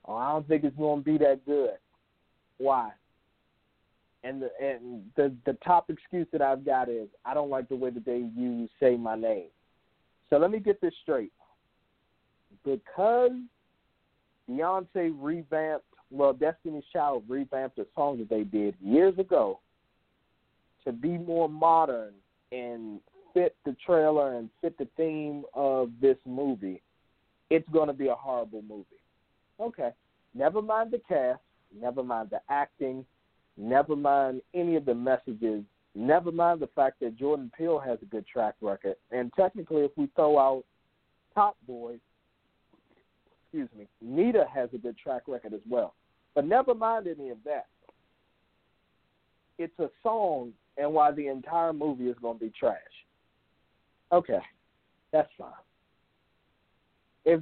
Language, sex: English, male